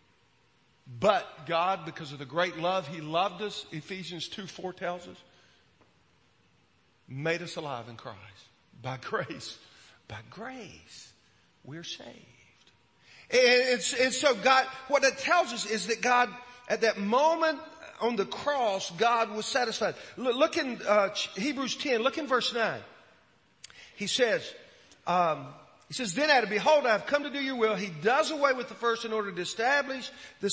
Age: 50-69